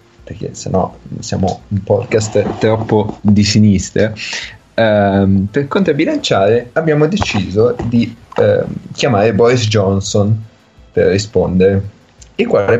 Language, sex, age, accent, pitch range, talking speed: Italian, male, 30-49, native, 100-130 Hz, 105 wpm